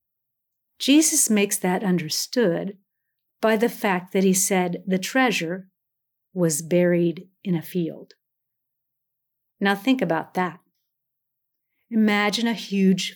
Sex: female